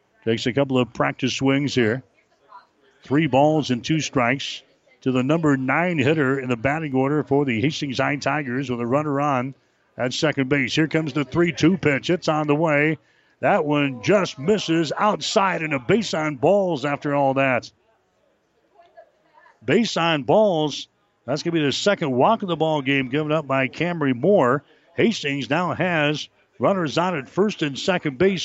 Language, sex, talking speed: English, male, 175 wpm